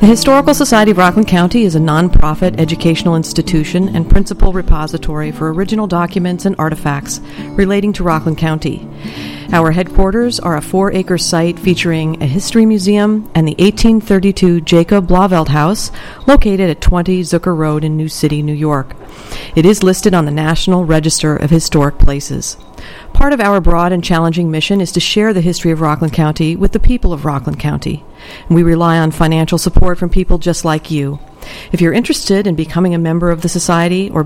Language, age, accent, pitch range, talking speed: English, 50-69, American, 155-195 Hz, 175 wpm